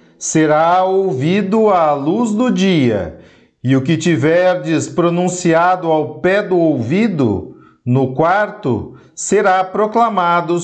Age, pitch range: 40-59, 170-210 Hz